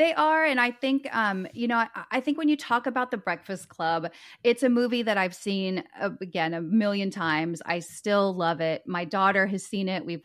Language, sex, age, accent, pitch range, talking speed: English, female, 30-49, American, 195-280 Hz, 230 wpm